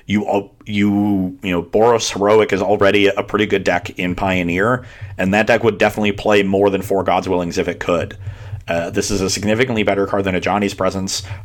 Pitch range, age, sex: 95-105 Hz, 30-49, male